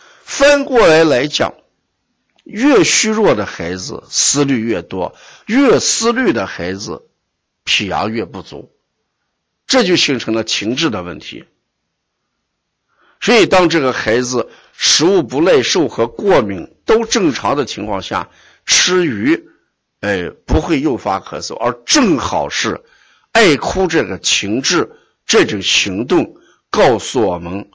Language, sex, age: Chinese, male, 50-69